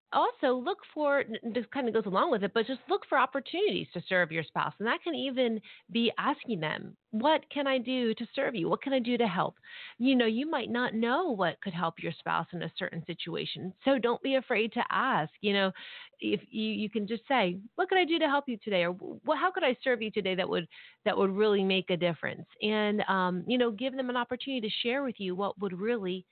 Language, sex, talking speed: English, female, 240 wpm